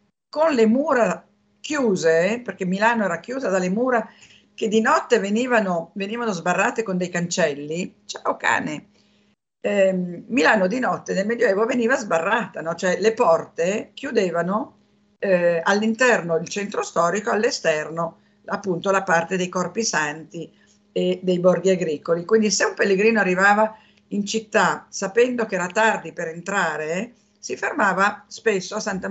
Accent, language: native, Italian